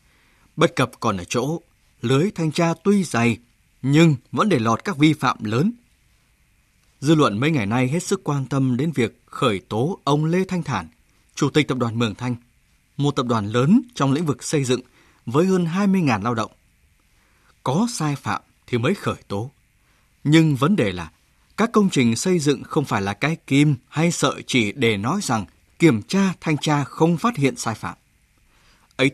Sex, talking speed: male, 190 wpm